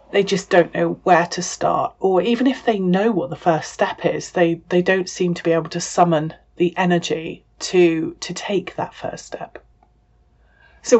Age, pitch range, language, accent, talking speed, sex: 30-49, 170-220 Hz, English, British, 190 wpm, female